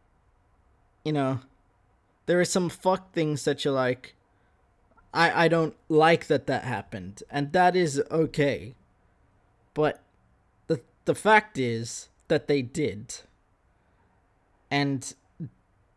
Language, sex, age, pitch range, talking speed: English, male, 20-39, 100-160 Hz, 115 wpm